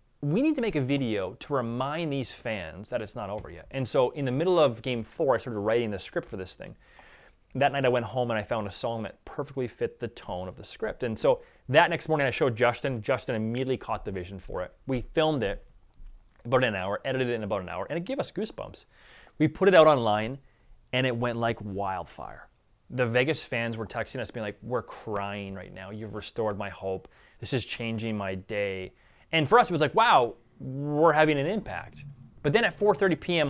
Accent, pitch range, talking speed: American, 110-145 Hz, 230 wpm